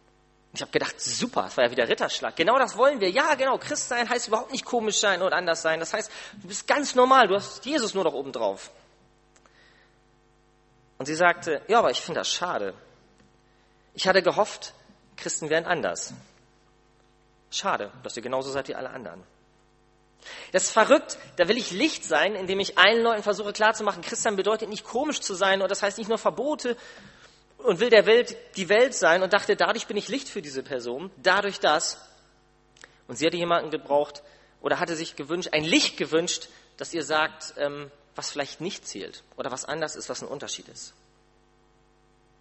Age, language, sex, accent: 40-59, German, male, German